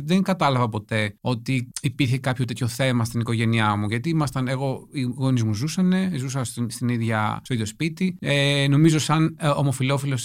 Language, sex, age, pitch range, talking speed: Greek, male, 30-49, 115-140 Hz, 145 wpm